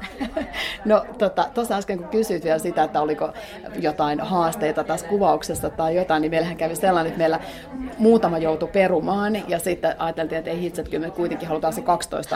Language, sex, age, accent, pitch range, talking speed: Finnish, female, 30-49, native, 160-200 Hz, 185 wpm